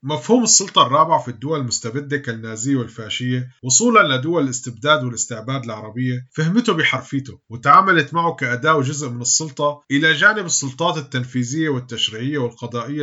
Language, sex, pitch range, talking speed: Arabic, male, 125-160 Hz, 125 wpm